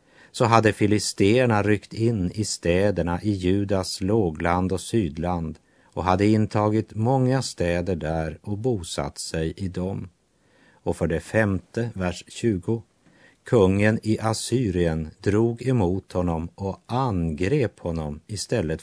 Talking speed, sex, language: 125 wpm, male, Swedish